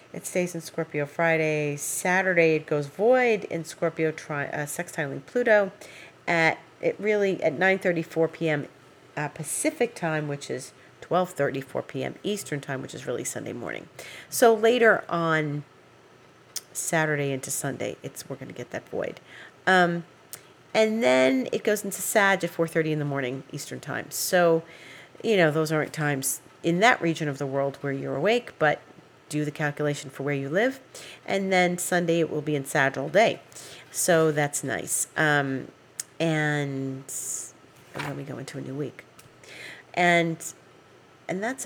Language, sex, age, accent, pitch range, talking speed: English, female, 40-59, American, 145-175 Hz, 155 wpm